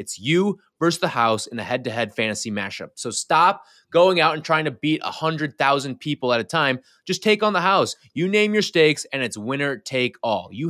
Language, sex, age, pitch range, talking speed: English, male, 20-39, 120-175 Hz, 225 wpm